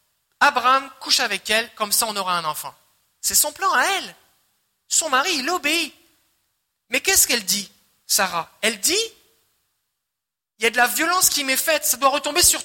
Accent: French